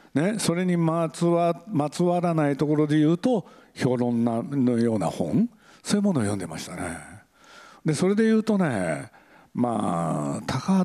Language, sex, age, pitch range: Japanese, male, 60-79, 125-200 Hz